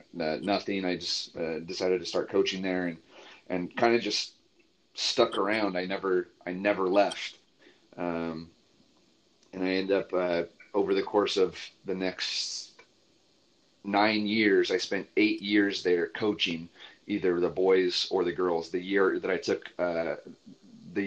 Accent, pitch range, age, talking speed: American, 90-100 Hz, 30-49, 155 wpm